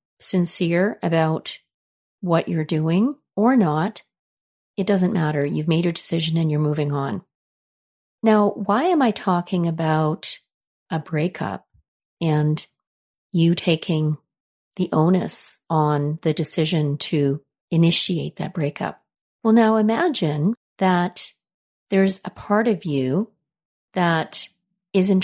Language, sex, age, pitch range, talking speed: English, female, 40-59, 160-195 Hz, 115 wpm